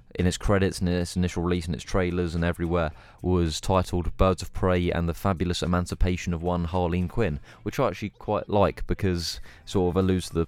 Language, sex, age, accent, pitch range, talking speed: English, male, 20-39, British, 85-100 Hz, 210 wpm